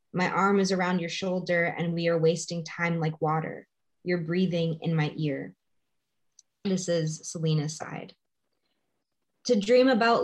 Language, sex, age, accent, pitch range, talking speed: English, female, 20-39, American, 160-185 Hz, 145 wpm